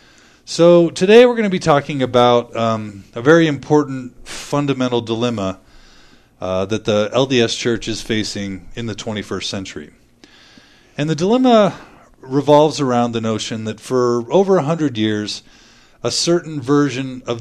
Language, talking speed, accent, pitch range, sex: English, 140 wpm, American, 110-135 Hz, male